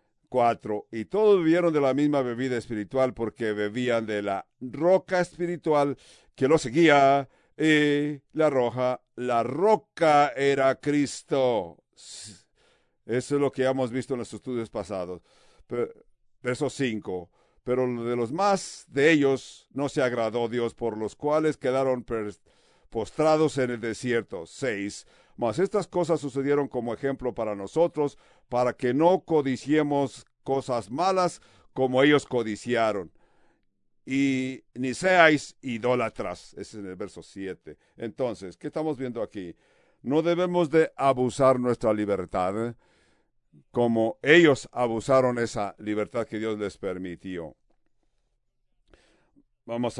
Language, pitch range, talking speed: English, 115-145 Hz, 125 wpm